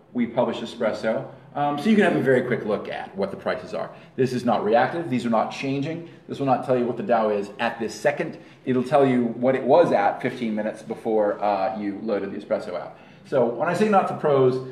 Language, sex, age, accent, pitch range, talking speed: English, male, 40-59, American, 110-140 Hz, 245 wpm